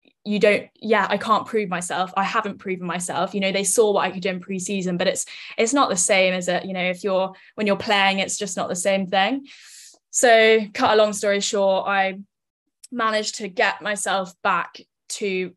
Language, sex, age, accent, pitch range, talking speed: English, female, 10-29, British, 190-210 Hz, 210 wpm